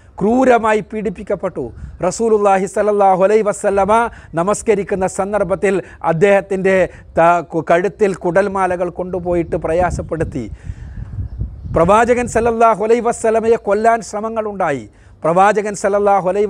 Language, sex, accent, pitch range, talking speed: Malayalam, male, native, 165-210 Hz, 75 wpm